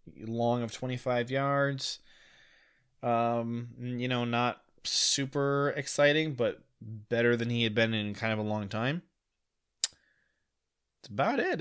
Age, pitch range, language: 20-39, 100-130 Hz, English